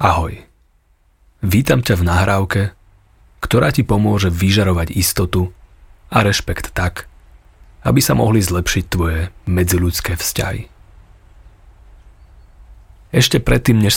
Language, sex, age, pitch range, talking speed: Slovak, male, 30-49, 85-100 Hz, 100 wpm